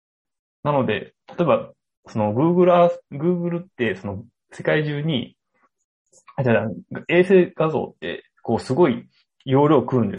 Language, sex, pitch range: Japanese, male, 110-150 Hz